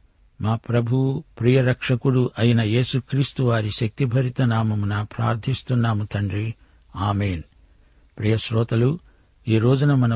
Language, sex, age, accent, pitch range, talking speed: Telugu, male, 60-79, native, 110-130 Hz, 95 wpm